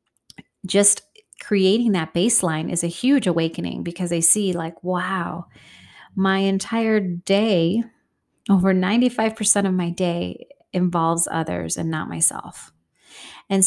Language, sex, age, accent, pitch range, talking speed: English, female, 30-49, American, 165-190 Hz, 120 wpm